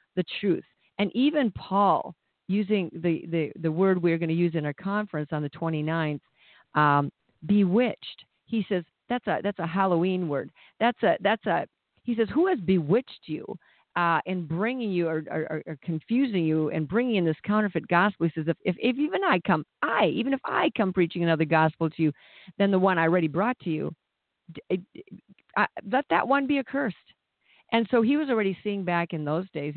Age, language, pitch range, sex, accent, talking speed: 50-69, English, 155-190 Hz, female, American, 195 wpm